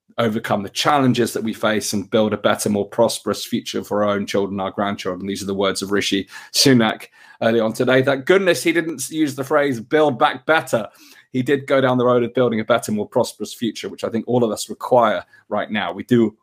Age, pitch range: 30-49, 110-140 Hz